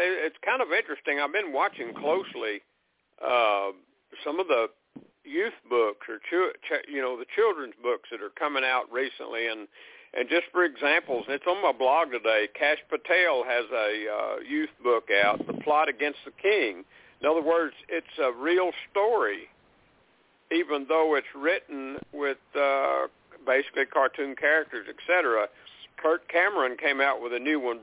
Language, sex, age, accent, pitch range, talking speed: English, male, 60-79, American, 130-175 Hz, 160 wpm